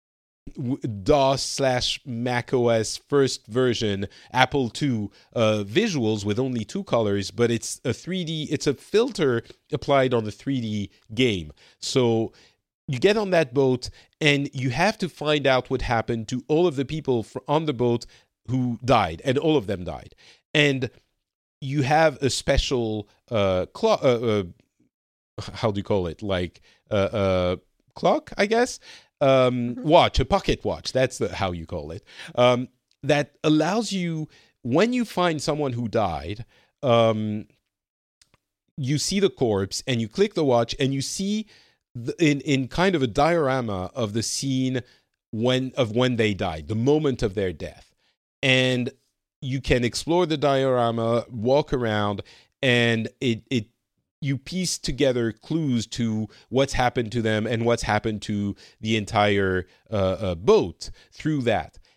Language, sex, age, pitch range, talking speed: English, male, 40-59, 110-145 Hz, 155 wpm